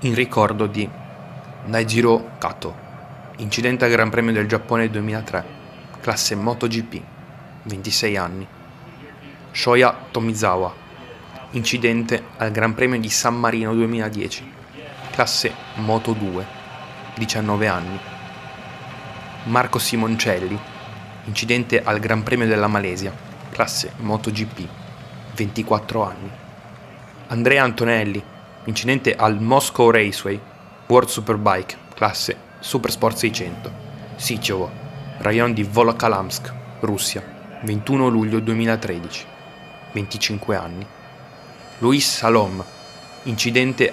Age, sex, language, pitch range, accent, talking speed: 20-39, male, Italian, 105-120 Hz, native, 90 wpm